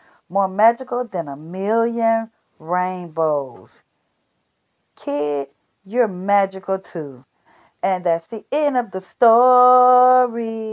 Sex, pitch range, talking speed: female, 155-185 Hz, 95 wpm